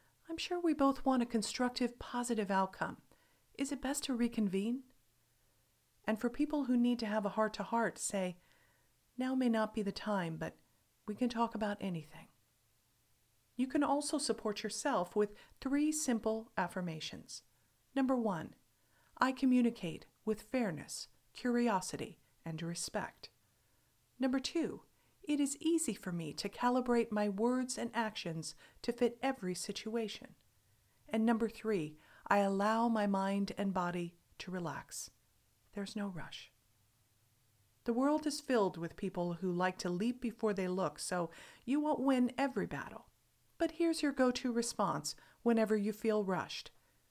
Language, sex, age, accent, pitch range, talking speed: English, female, 40-59, American, 175-250 Hz, 145 wpm